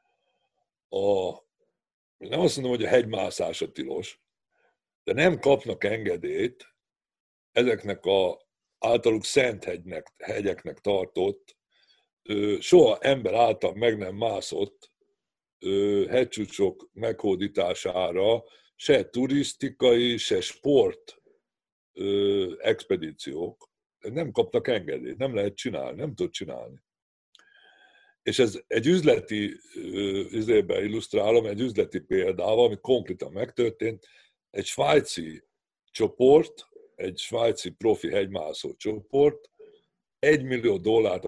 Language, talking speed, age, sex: Hungarian, 100 wpm, 60-79, male